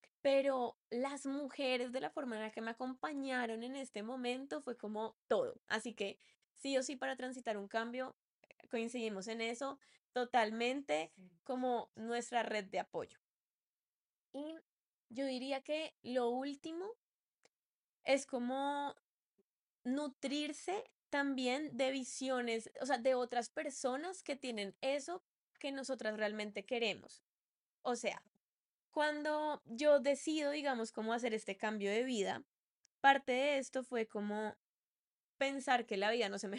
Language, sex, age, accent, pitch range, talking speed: Spanish, female, 10-29, Colombian, 225-285 Hz, 135 wpm